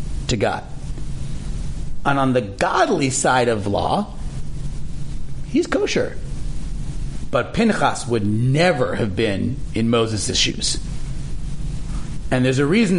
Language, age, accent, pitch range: English, 40-59, American, 130-175 Hz